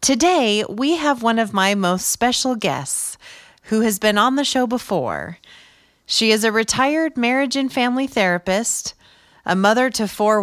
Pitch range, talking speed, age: 180-235 Hz, 160 wpm, 30-49